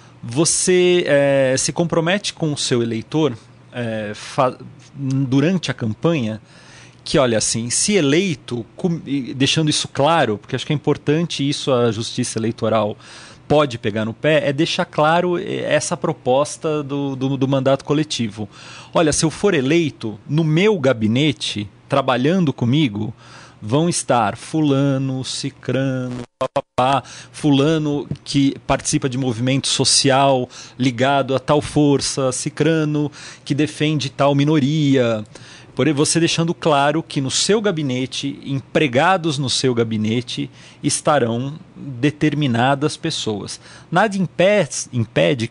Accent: Brazilian